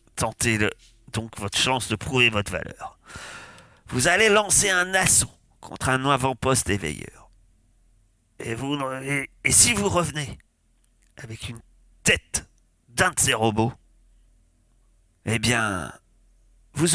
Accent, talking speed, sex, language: French, 120 wpm, male, French